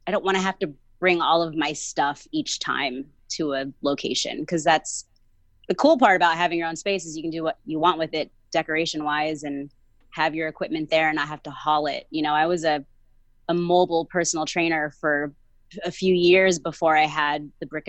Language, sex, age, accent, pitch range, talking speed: English, female, 20-39, American, 145-175 Hz, 220 wpm